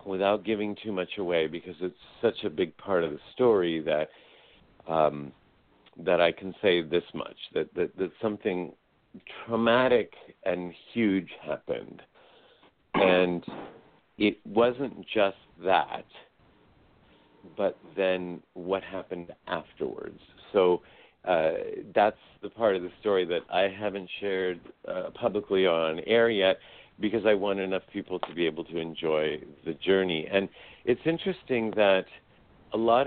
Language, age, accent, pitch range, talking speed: English, 50-69, American, 90-110 Hz, 140 wpm